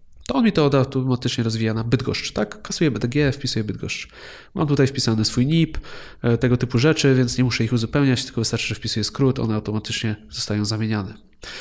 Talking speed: 185 wpm